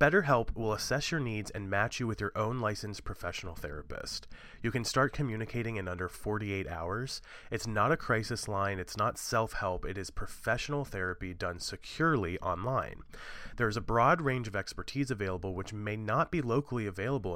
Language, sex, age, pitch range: English, male, 30-49, 100-130 Hz